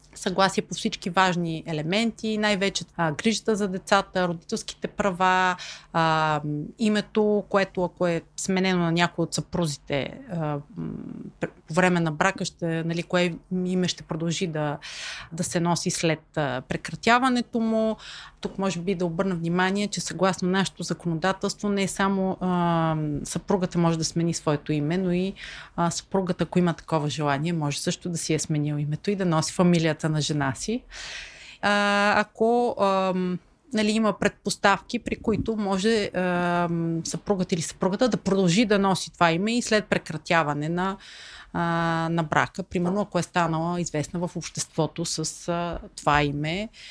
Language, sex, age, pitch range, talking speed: Bulgarian, female, 30-49, 160-195 Hz, 150 wpm